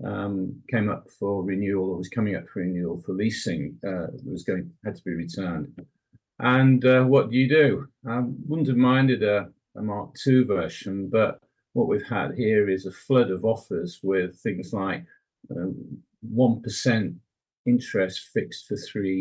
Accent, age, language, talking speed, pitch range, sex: British, 50-69, English, 170 wpm, 95-115 Hz, male